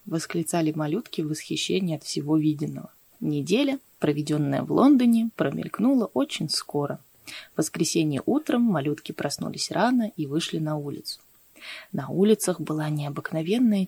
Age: 20-39